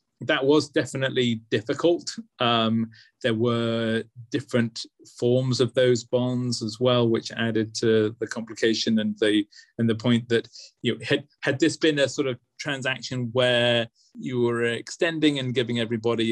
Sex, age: male, 20-39